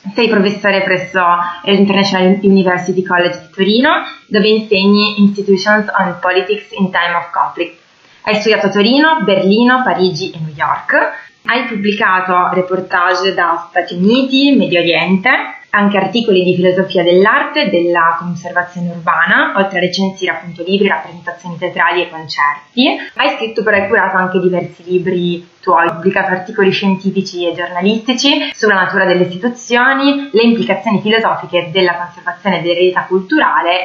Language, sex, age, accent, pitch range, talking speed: Italian, female, 20-39, native, 175-205 Hz, 135 wpm